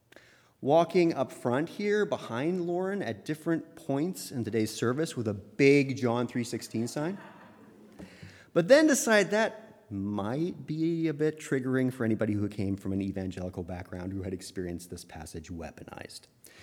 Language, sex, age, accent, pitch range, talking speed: English, male, 30-49, American, 100-155 Hz, 150 wpm